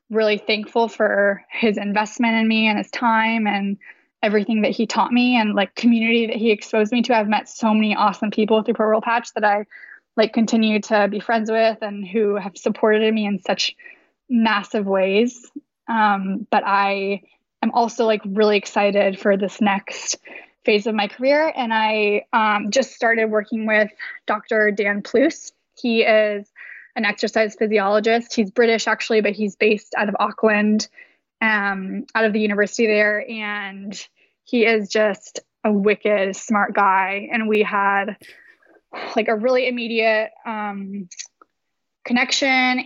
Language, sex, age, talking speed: English, female, 10-29, 160 wpm